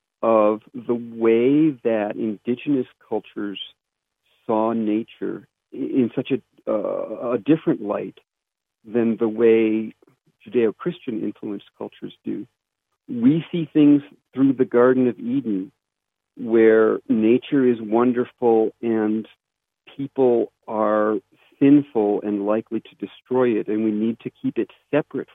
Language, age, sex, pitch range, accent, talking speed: English, 50-69, male, 105-130 Hz, American, 115 wpm